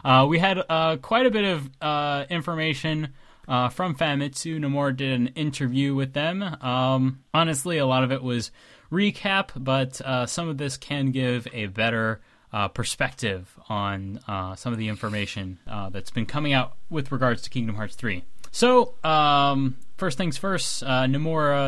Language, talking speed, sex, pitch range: English, 170 wpm, male, 120-165 Hz